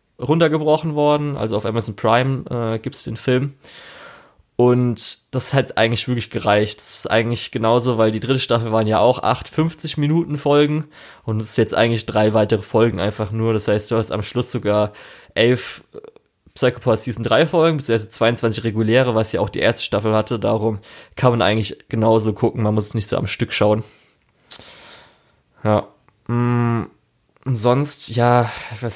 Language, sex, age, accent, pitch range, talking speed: German, male, 20-39, German, 110-145 Hz, 170 wpm